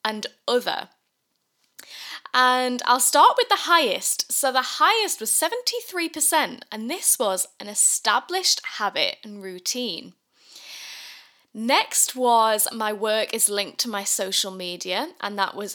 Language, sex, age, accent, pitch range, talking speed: English, female, 10-29, British, 200-295 Hz, 130 wpm